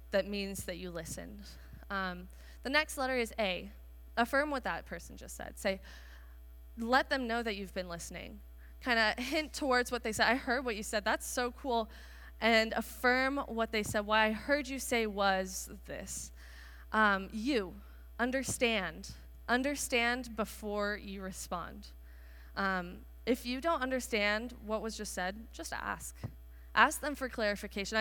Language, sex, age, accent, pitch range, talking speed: English, female, 20-39, American, 185-255 Hz, 155 wpm